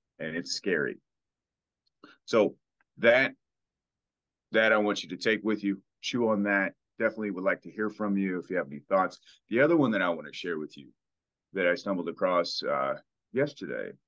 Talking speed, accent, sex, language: 190 wpm, American, male, English